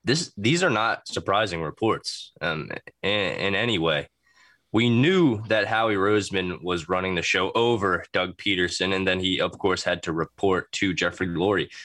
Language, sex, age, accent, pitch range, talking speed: English, male, 20-39, American, 85-115 Hz, 170 wpm